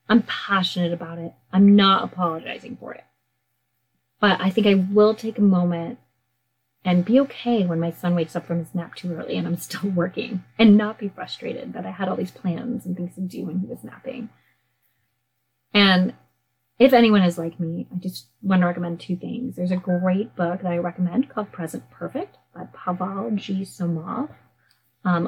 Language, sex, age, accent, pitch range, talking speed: English, female, 30-49, American, 170-200 Hz, 190 wpm